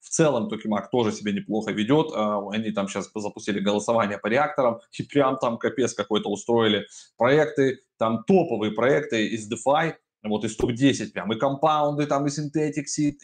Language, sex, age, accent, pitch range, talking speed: Russian, male, 20-39, native, 110-145 Hz, 165 wpm